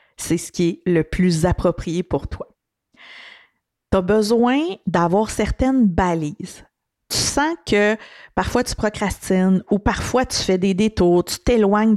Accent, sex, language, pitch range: Canadian, female, French, 170-230 Hz